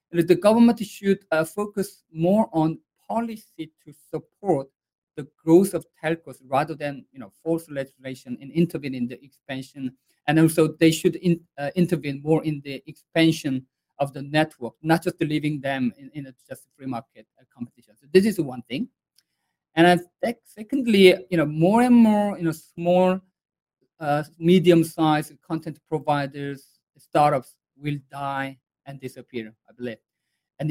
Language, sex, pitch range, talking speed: English, male, 135-175 Hz, 155 wpm